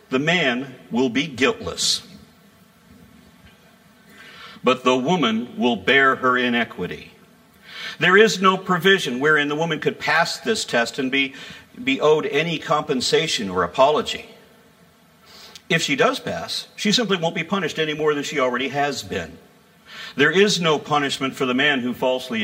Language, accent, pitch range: English, American, 160-225 Hz